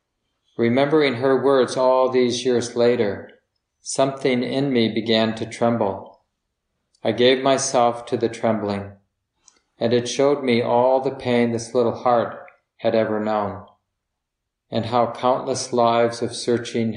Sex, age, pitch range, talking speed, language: male, 40-59, 110-125 Hz, 135 wpm, English